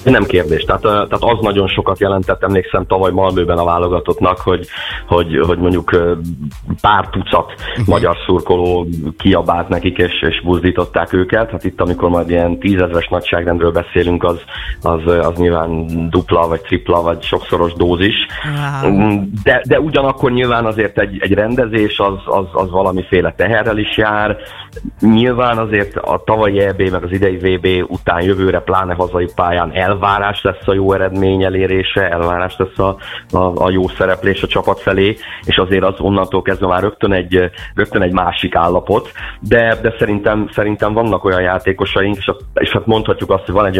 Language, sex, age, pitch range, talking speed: Hungarian, male, 30-49, 85-100 Hz, 160 wpm